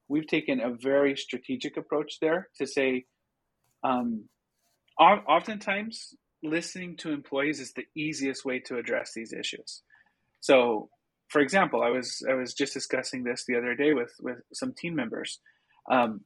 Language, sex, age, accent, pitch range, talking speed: English, male, 30-49, American, 130-165 Hz, 150 wpm